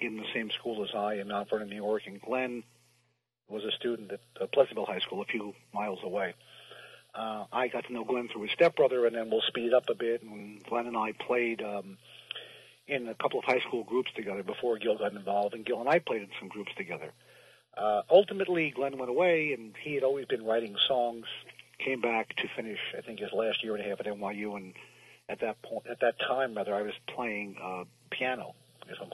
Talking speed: 220 wpm